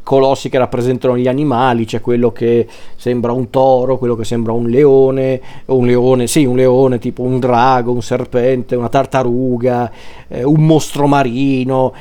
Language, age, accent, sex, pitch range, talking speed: Italian, 40-59, native, male, 125-145 Hz, 165 wpm